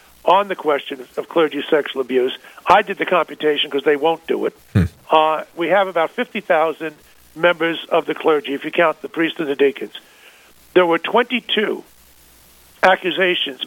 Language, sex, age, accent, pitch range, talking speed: English, male, 50-69, American, 155-195 Hz, 160 wpm